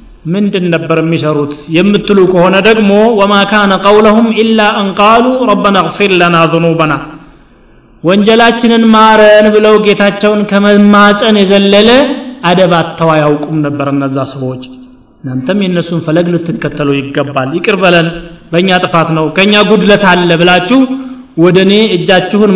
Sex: male